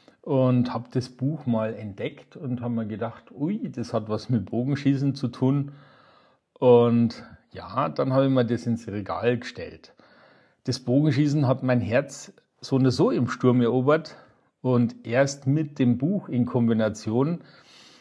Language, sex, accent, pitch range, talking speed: German, male, German, 115-135 Hz, 155 wpm